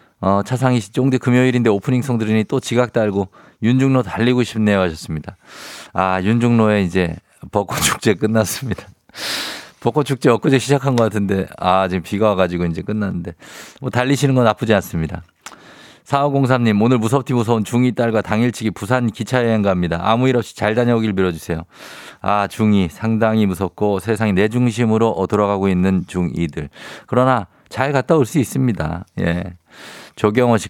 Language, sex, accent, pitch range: Korean, male, native, 95-130 Hz